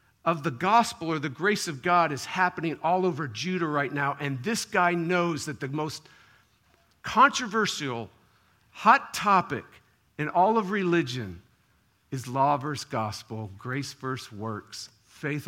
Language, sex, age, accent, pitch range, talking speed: English, male, 50-69, American, 105-140 Hz, 145 wpm